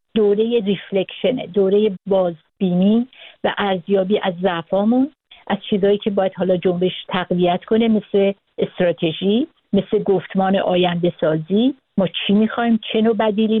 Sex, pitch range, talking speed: female, 190-230 Hz, 120 wpm